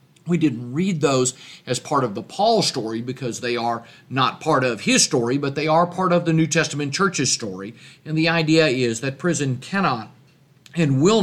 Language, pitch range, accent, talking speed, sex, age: English, 125-165 Hz, American, 200 wpm, male, 50-69